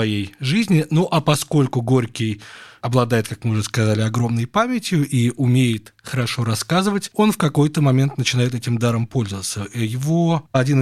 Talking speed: 150 wpm